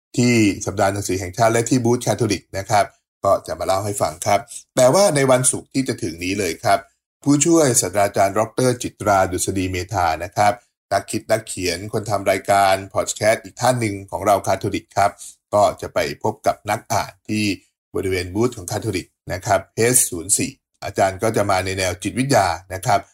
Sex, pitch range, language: male, 95-125 Hz, English